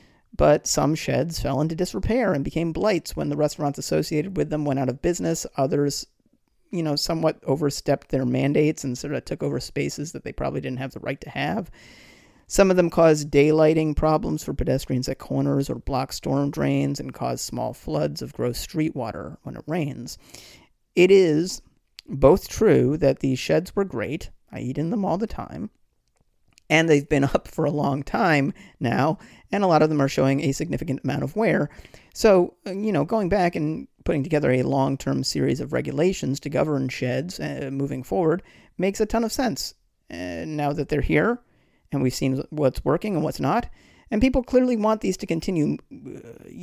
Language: English